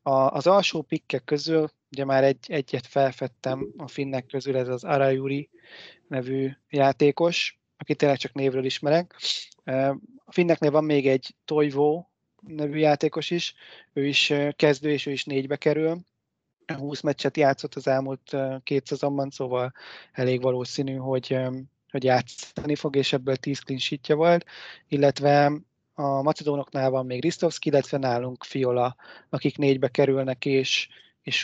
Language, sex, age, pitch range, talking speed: Hungarian, male, 20-39, 130-150 Hz, 140 wpm